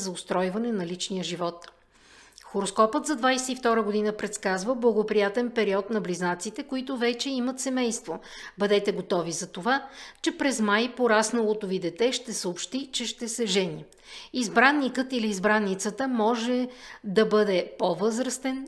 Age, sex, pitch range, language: 50-69, female, 190-245 Hz, Bulgarian